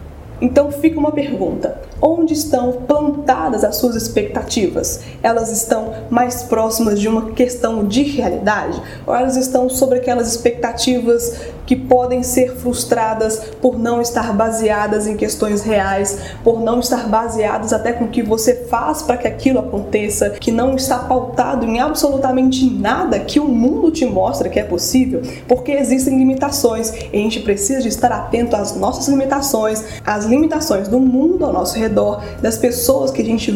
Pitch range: 225-270 Hz